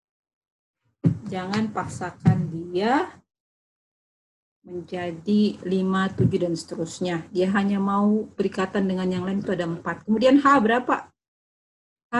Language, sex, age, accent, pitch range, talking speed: Indonesian, female, 30-49, native, 180-225 Hz, 110 wpm